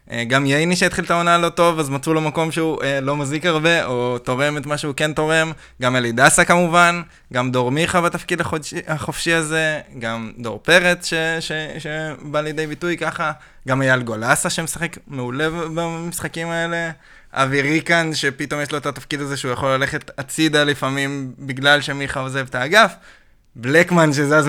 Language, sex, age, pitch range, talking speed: Hebrew, male, 20-39, 135-170 Hz, 165 wpm